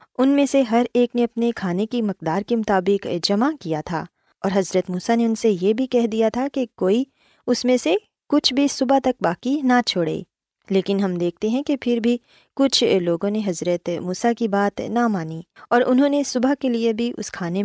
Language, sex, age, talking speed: Urdu, female, 20-39, 175 wpm